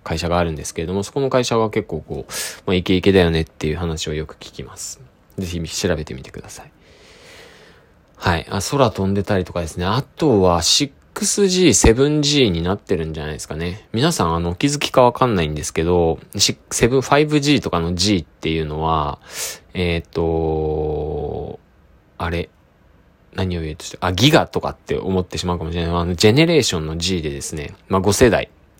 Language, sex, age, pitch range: Japanese, male, 20-39, 80-105 Hz